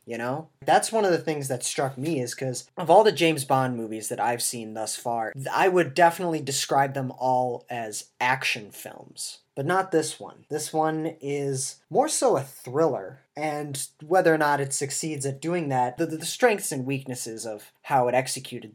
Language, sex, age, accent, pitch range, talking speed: English, male, 20-39, American, 130-170 Hz, 195 wpm